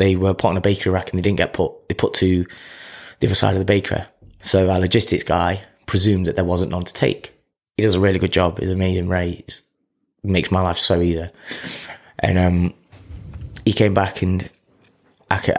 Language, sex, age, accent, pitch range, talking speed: English, male, 20-39, British, 90-100 Hz, 210 wpm